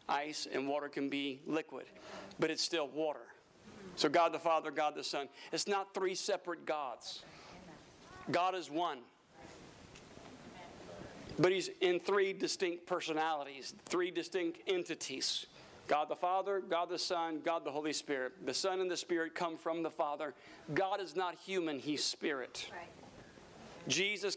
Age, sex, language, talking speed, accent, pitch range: 50-69, male, English, 150 wpm, American, 155-200 Hz